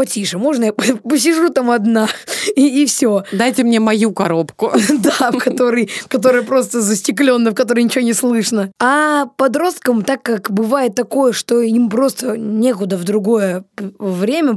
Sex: female